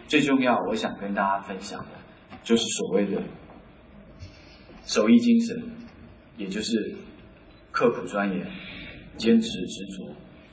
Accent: native